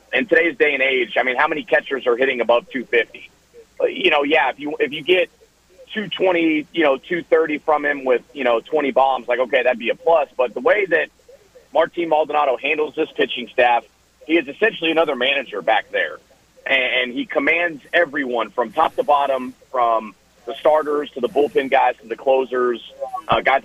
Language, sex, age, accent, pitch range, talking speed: English, male, 30-49, American, 145-205 Hz, 195 wpm